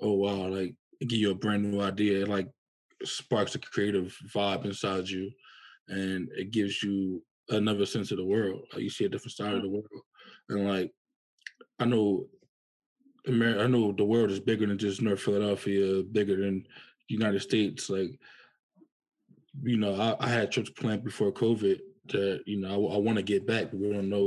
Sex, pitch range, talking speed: male, 95-115 Hz, 195 wpm